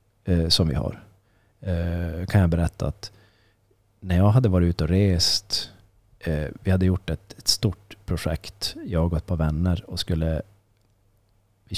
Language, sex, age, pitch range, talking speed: Swedish, male, 30-49, 80-100 Hz, 145 wpm